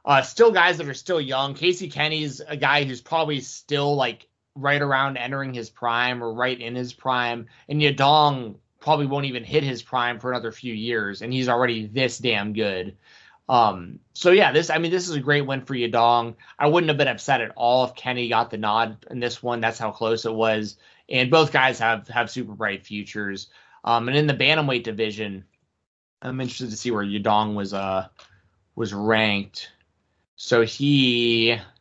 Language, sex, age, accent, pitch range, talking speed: English, male, 20-39, American, 115-140 Hz, 190 wpm